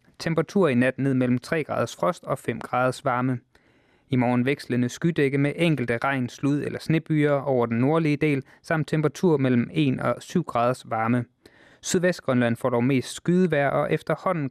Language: English